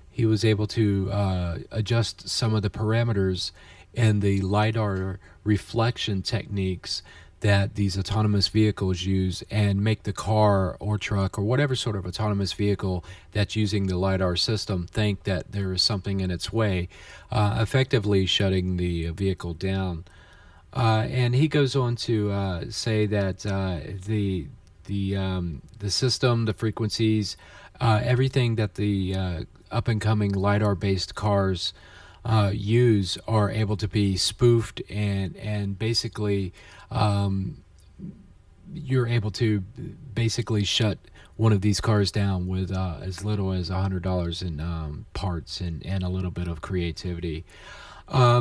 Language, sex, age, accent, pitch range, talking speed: English, male, 40-59, American, 95-110 Hz, 145 wpm